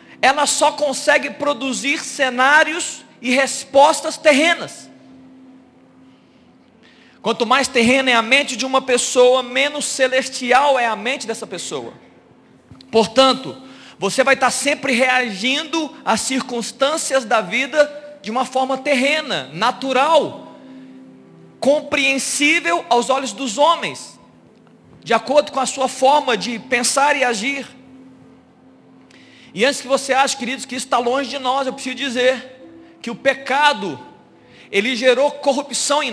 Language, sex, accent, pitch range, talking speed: Portuguese, male, Brazilian, 260-295 Hz, 125 wpm